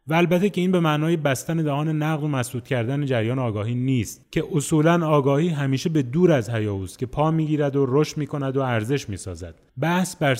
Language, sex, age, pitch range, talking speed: Persian, male, 30-49, 120-155 Hz, 195 wpm